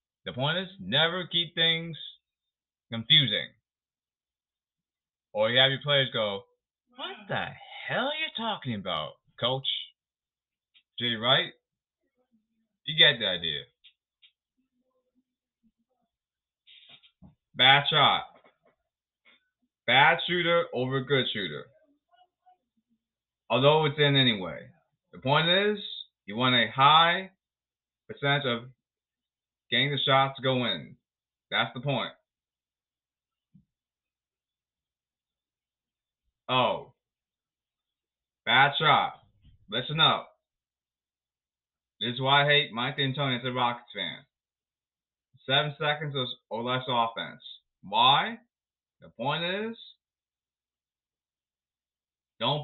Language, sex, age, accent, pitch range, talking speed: English, male, 30-49, American, 115-190 Hz, 95 wpm